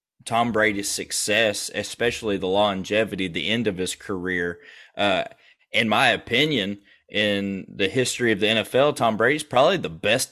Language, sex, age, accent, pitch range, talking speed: English, male, 30-49, American, 105-140 Hz, 150 wpm